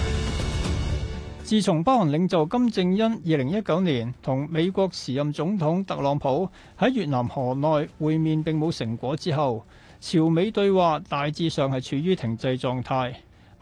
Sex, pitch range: male, 125-175 Hz